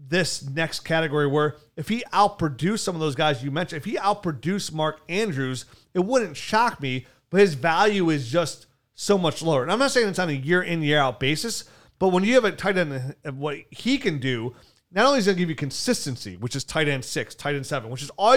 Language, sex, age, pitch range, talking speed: English, male, 30-49, 140-185 Hz, 230 wpm